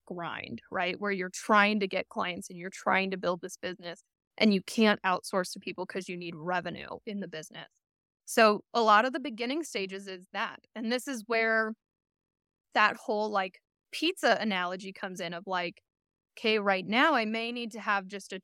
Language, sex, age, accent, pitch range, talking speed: English, female, 10-29, American, 190-230 Hz, 195 wpm